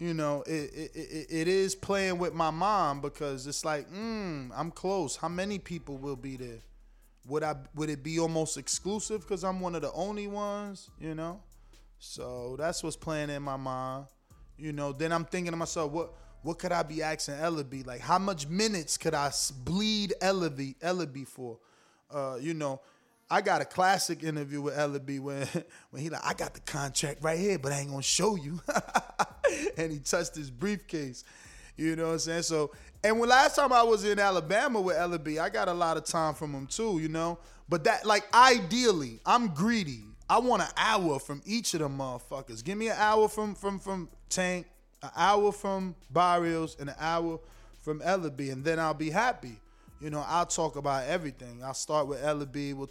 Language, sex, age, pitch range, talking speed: English, male, 20-39, 140-180 Hz, 205 wpm